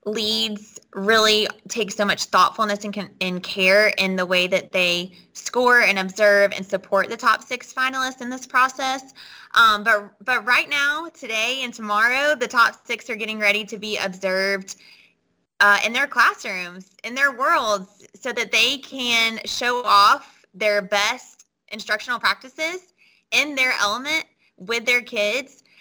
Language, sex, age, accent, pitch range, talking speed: English, female, 20-39, American, 205-250 Hz, 155 wpm